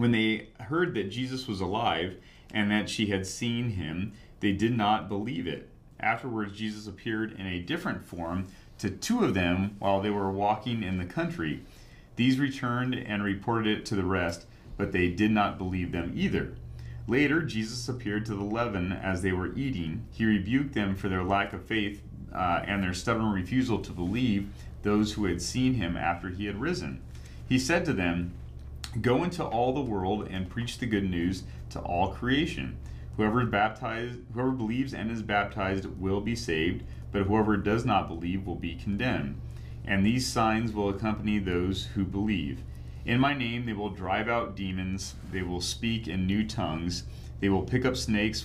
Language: English